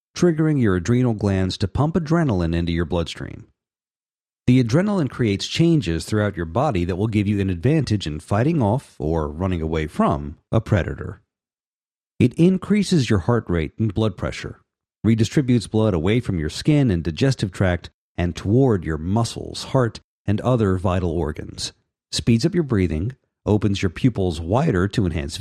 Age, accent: 50-69, American